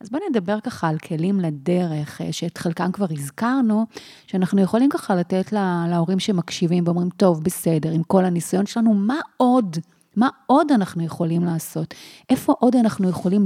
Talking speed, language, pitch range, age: 160 wpm, Hebrew, 170-215 Hz, 30-49